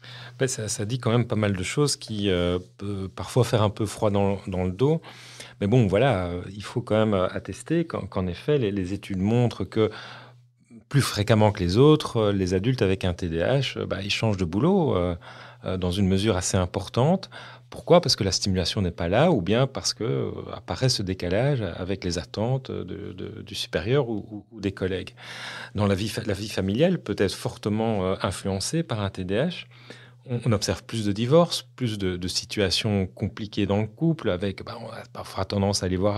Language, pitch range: French, 95-120 Hz